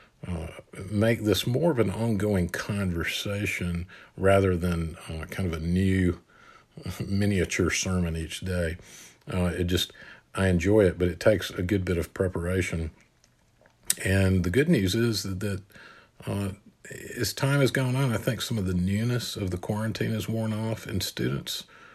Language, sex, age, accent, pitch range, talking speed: English, male, 50-69, American, 90-110 Hz, 160 wpm